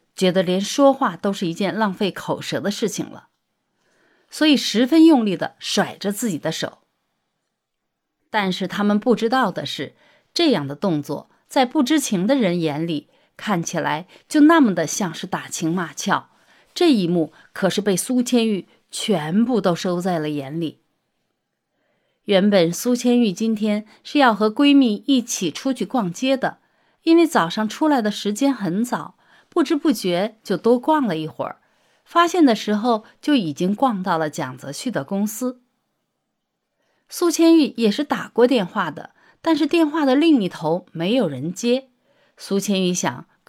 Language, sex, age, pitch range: Chinese, female, 30-49, 180-275 Hz